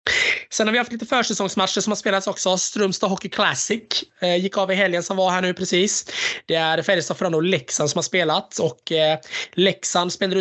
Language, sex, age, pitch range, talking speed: Swedish, male, 20-39, 125-180 Hz, 200 wpm